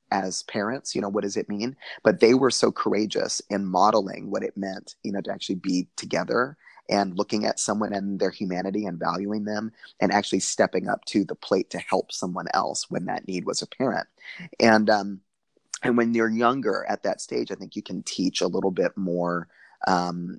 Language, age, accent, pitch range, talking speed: English, 20-39, American, 95-105 Hz, 205 wpm